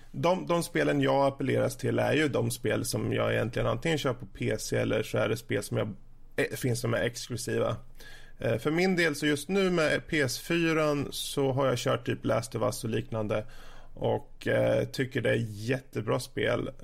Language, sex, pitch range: Swedish, male, 115-145 Hz